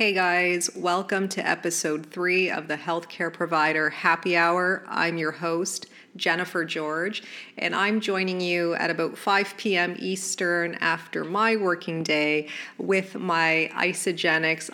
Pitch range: 160-190 Hz